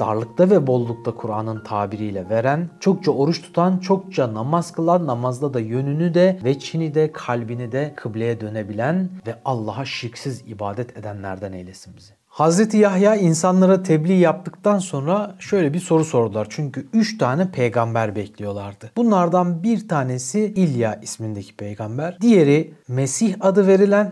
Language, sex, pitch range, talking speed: Turkish, male, 120-180 Hz, 135 wpm